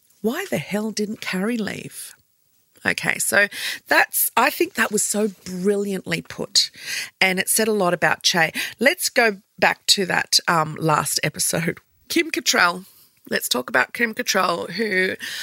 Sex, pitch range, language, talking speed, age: female, 190-260 Hz, English, 150 wpm, 40-59